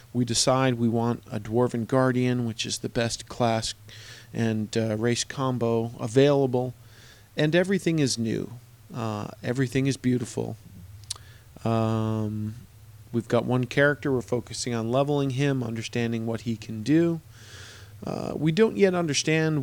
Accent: American